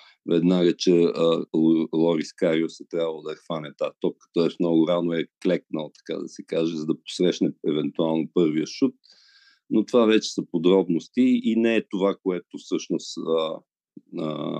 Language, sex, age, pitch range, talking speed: Bulgarian, male, 50-69, 85-105 Hz, 175 wpm